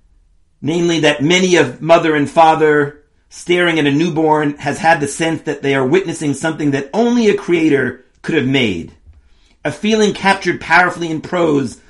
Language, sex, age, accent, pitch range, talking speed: English, male, 40-59, American, 125-185 Hz, 165 wpm